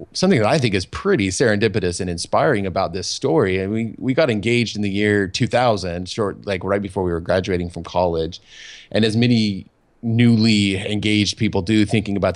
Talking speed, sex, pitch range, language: 190 wpm, male, 90-110 Hz, English